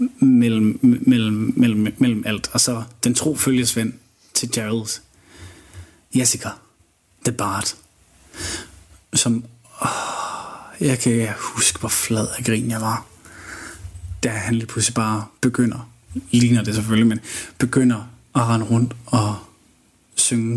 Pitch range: 110-125 Hz